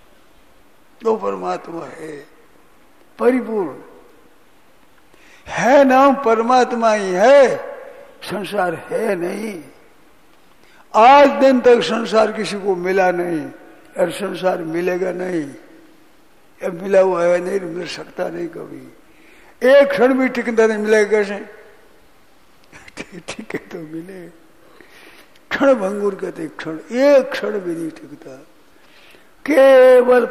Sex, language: male, Hindi